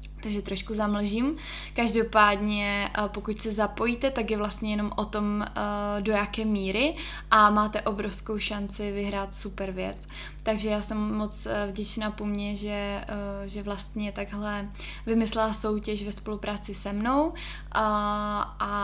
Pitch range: 205-220 Hz